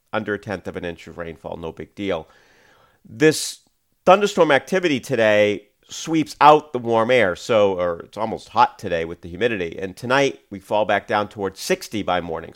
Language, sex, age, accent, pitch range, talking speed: English, male, 40-59, American, 95-130 Hz, 185 wpm